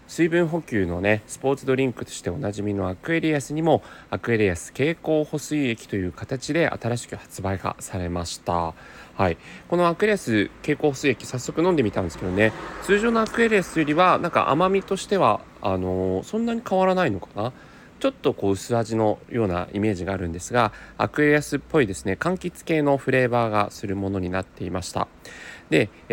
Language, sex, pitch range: Japanese, male, 95-165 Hz